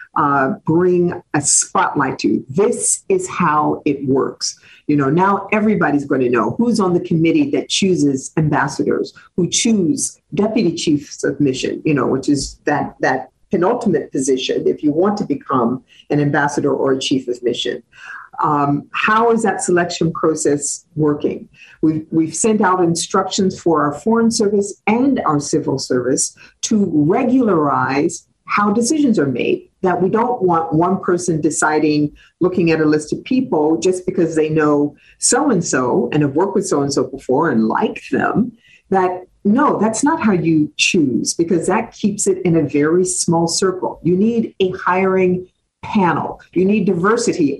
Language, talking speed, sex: English, 160 wpm, female